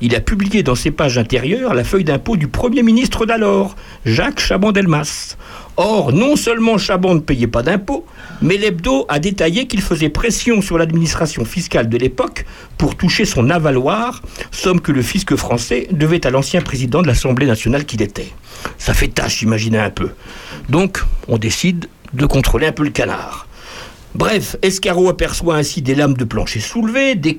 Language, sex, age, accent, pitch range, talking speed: French, male, 60-79, French, 130-195 Hz, 175 wpm